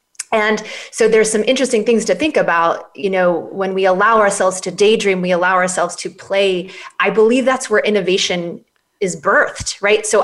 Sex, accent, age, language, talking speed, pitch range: female, American, 30-49, English, 180 wpm, 185-225 Hz